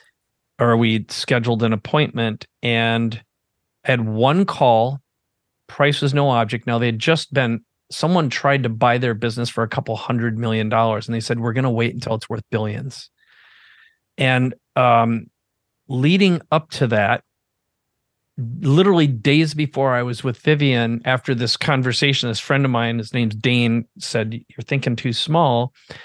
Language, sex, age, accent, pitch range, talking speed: English, male, 40-59, American, 115-140 Hz, 160 wpm